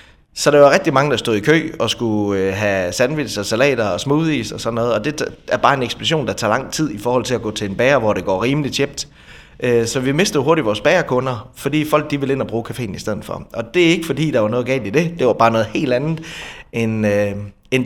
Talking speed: 260 wpm